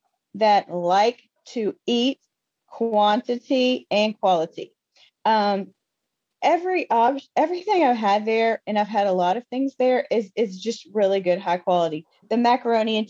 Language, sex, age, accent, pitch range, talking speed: English, female, 30-49, American, 200-265 Hz, 145 wpm